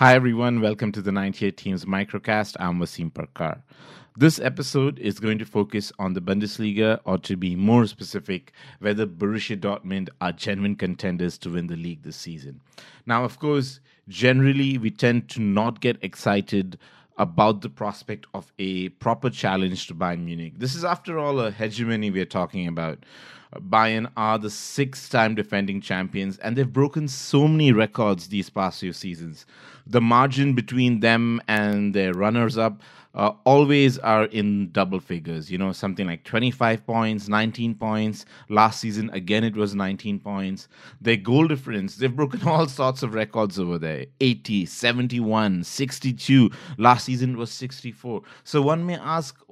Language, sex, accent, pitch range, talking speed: English, male, Indian, 100-125 Hz, 160 wpm